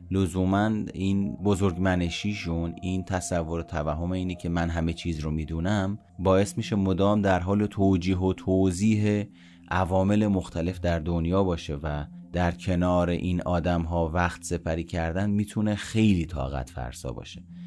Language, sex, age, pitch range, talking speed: Persian, male, 30-49, 80-100 Hz, 140 wpm